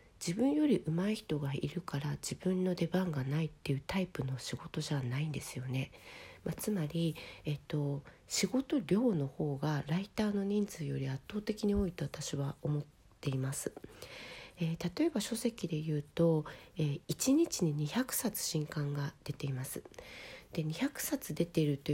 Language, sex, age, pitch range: Japanese, female, 40-59, 145-205 Hz